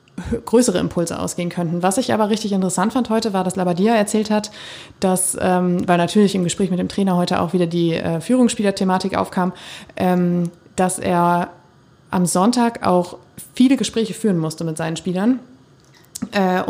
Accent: German